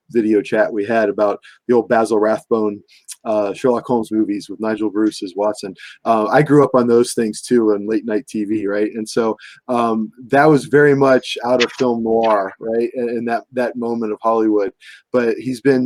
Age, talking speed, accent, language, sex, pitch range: 20-39, 200 wpm, American, English, male, 110-135 Hz